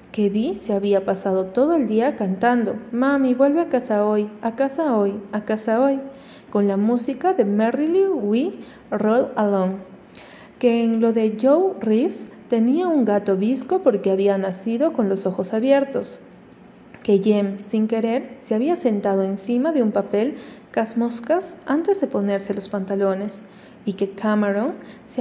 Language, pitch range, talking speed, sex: Spanish, 200-260 Hz, 155 wpm, female